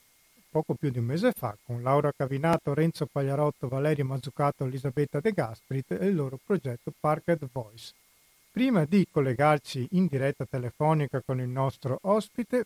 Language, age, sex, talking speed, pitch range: Italian, 40-59, male, 150 wpm, 135-170 Hz